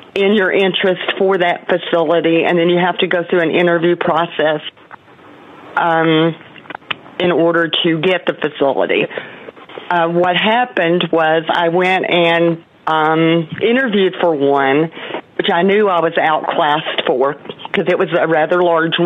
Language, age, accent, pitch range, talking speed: English, 40-59, American, 160-190 Hz, 150 wpm